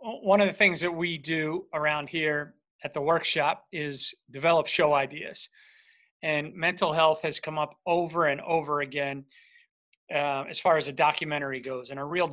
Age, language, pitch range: 40-59, English, 150-185 Hz